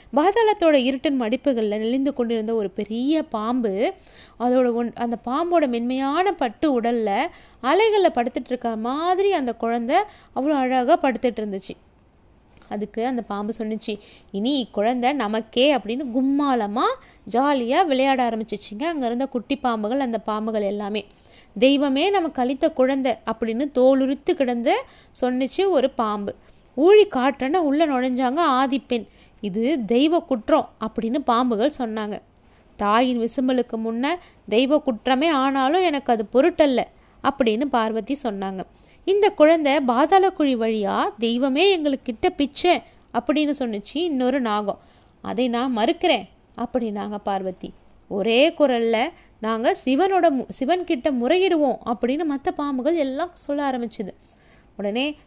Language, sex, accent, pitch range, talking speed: Tamil, female, native, 230-295 Hz, 115 wpm